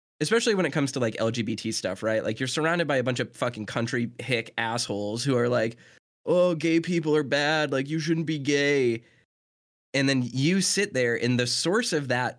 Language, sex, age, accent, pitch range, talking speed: English, male, 20-39, American, 120-195 Hz, 210 wpm